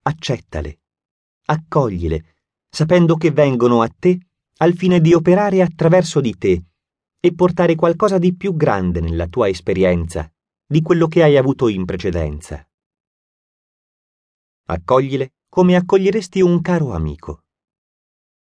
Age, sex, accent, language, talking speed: 30-49, male, native, Italian, 115 wpm